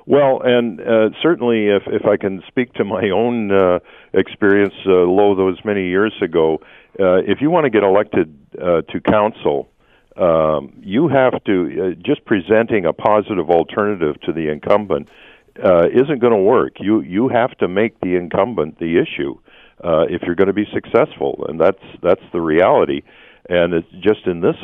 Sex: male